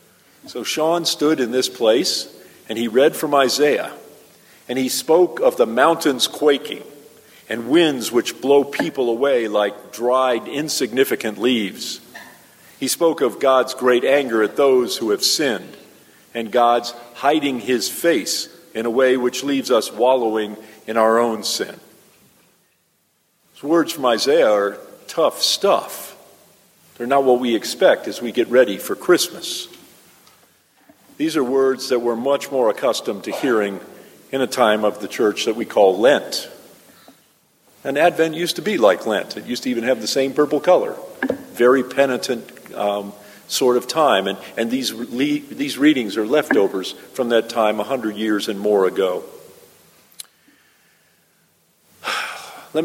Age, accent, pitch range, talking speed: 50-69, American, 120-170 Hz, 150 wpm